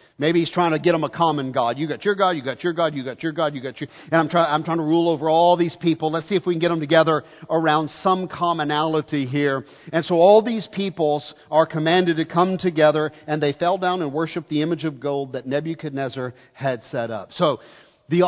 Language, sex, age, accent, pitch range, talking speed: English, male, 50-69, American, 155-185 Hz, 245 wpm